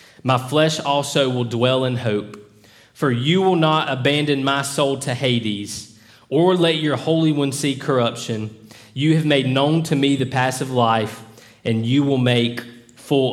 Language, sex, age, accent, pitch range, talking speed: English, male, 20-39, American, 115-135 Hz, 170 wpm